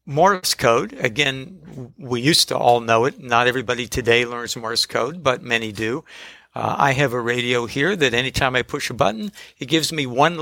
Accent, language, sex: American, English, male